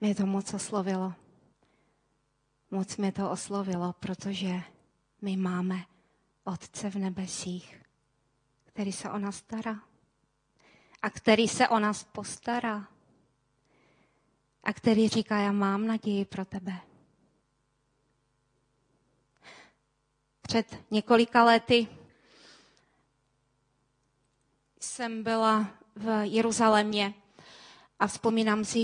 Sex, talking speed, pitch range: female, 90 wpm, 190-220 Hz